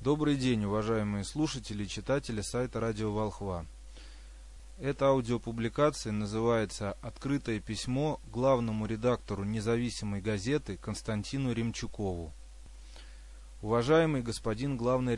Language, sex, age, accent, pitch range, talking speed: Russian, male, 20-39, native, 105-135 Hz, 90 wpm